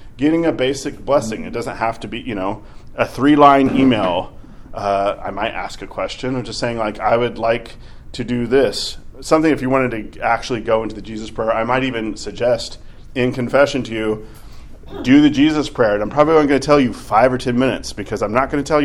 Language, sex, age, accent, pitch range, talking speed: English, male, 30-49, American, 110-130 Hz, 225 wpm